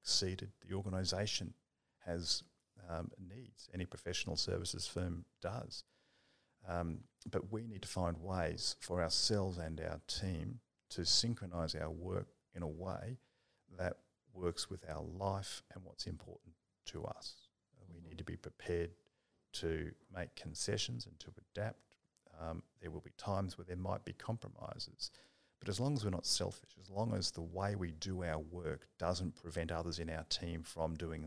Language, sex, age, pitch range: English, male, 50-69, 85-100 Hz